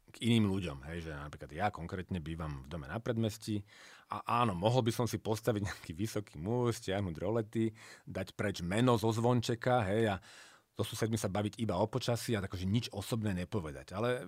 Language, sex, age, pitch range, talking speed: Slovak, male, 40-59, 95-120 Hz, 190 wpm